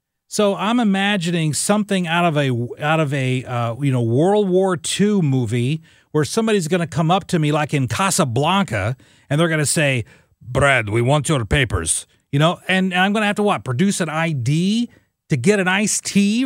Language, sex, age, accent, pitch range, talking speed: English, male, 40-59, American, 125-185 Hz, 205 wpm